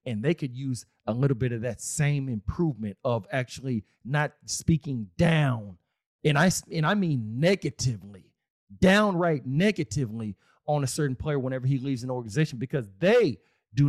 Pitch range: 115-140 Hz